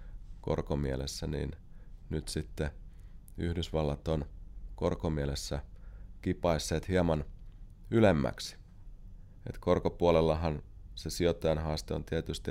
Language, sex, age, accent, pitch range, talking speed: Finnish, male, 30-49, native, 80-95 Hz, 80 wpm